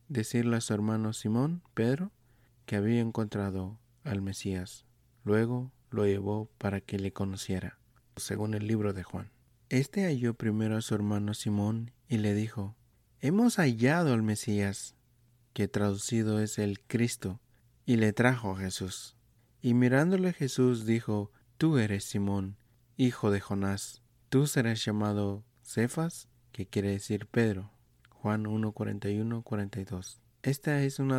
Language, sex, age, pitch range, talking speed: Spanish, male, 30-49, 105-125 Hz, 140 wpm